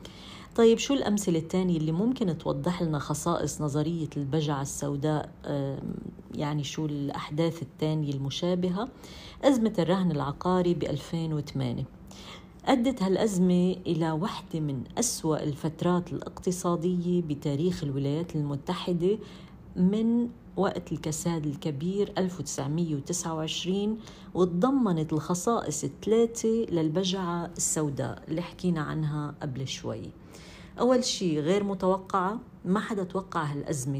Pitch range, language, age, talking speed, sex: 150-185 Hz, Arabic, 40-59, 95 wpm, female